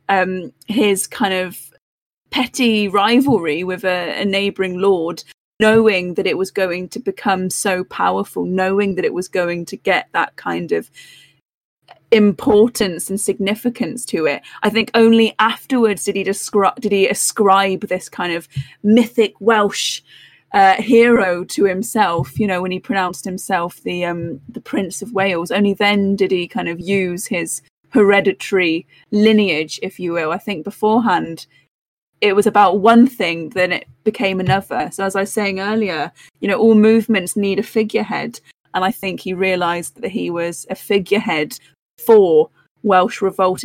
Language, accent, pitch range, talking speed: English, British, 185-225 Hz, 160 wpm